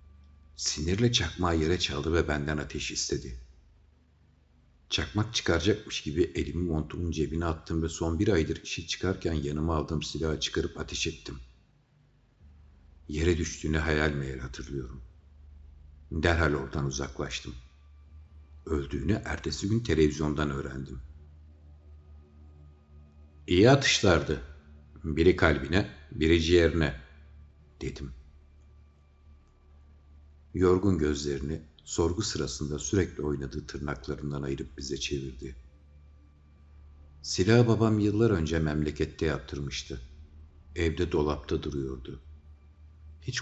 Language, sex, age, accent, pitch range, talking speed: Turkish, male, 60-79, native, 75-85 Hz, 95 wpm